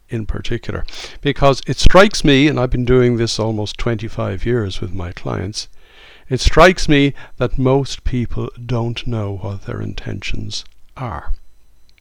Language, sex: English, male